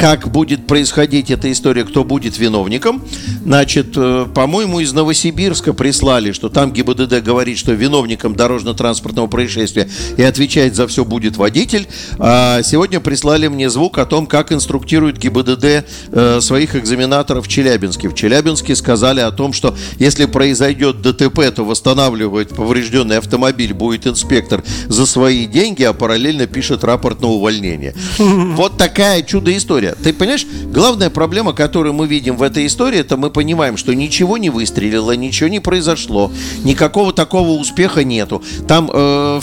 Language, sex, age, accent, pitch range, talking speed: Russian, male, 50-69, native, 120-155 Hz, 140 wpm